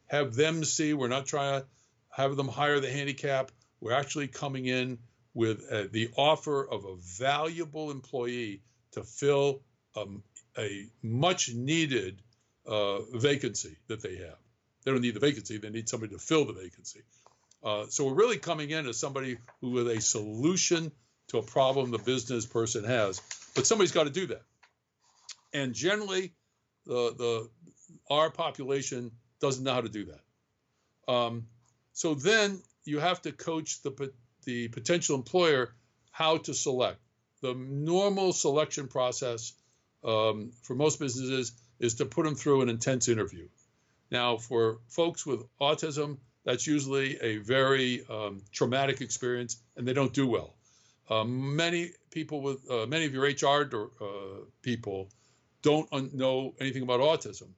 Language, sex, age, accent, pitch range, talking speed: English, male, 60-79, American, 115-145 Hz, 155 wpm